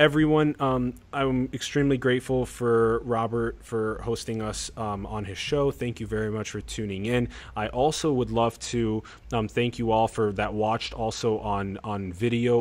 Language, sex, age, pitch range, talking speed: English, male, 20-39, 100-120 Hz, 175 wpm